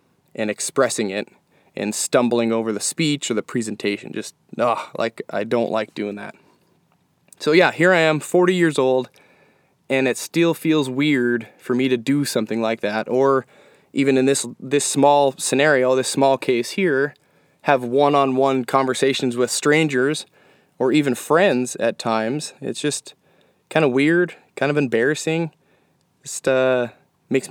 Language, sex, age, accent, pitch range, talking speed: English, male, 20-39, American, 115-140 Hz, 155 wpm